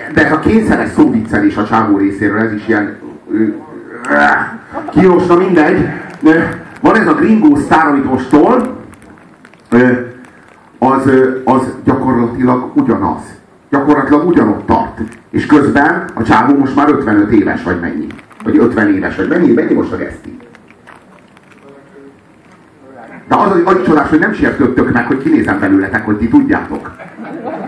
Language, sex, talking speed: Hungarian, male, 130 wpm